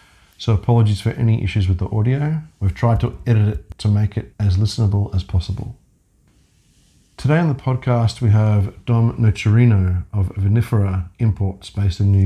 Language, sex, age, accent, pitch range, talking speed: English, male, 40-59, Australian, 105-125 Hz, 165 wpm